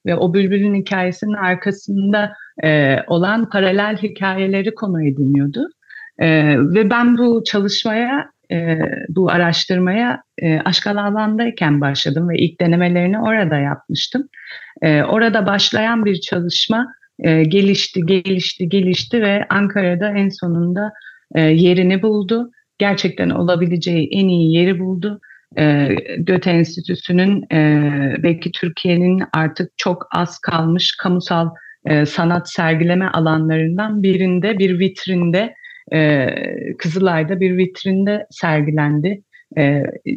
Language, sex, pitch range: Turkish, female, 160-205 Hz